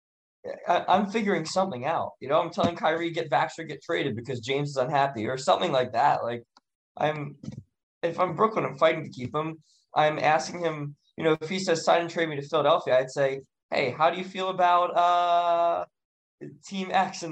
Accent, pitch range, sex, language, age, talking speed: American, 125-170 Hz, male, English, 20-39, 200 wpm